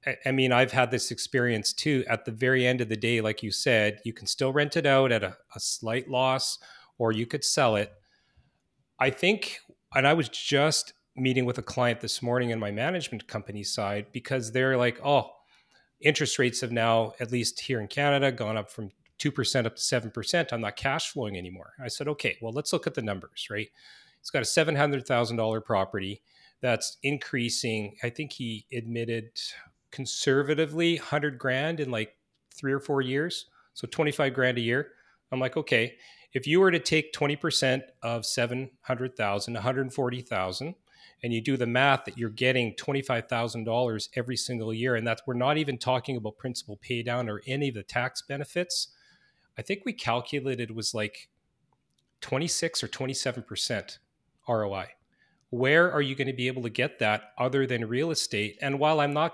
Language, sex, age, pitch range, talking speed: English, male, 40-59, 115-140 Hz, 180 wpm